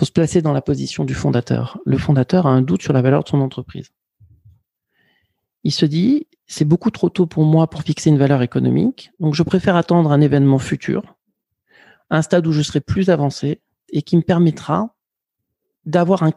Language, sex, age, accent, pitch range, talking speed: French, male, 40-59, French, 140-180 Hz, 190 wpm